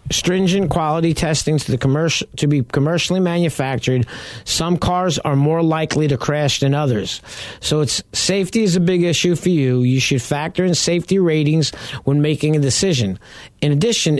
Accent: American